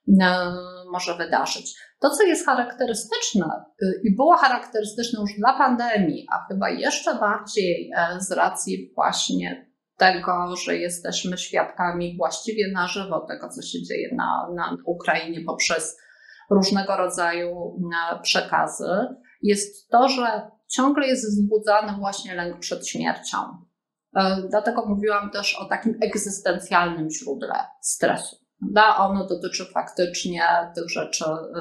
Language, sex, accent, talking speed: Polish, female, native, 115 wpm